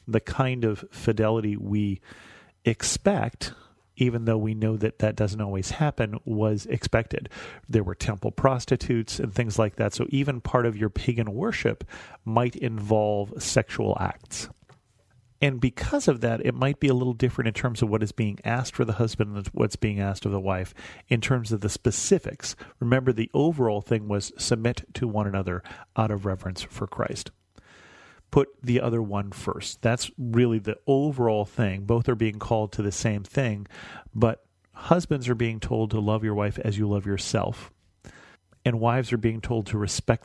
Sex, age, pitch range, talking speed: male, 40-59, 105-125 Hz, 180 wpm